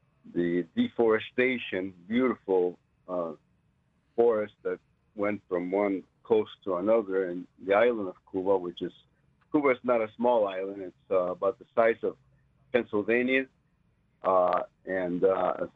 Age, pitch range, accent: 60-79, 90-120 Hz, American